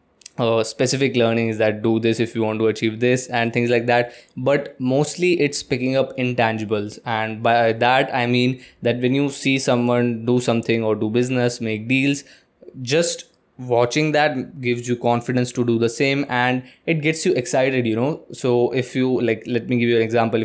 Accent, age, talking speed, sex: native, 20-39, 200 wpm, male